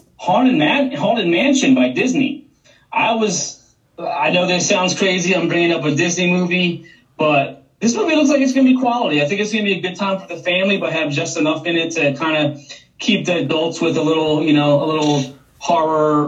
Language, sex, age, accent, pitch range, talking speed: English, male, 30-49, American, 145-190 Hz, 220 wpm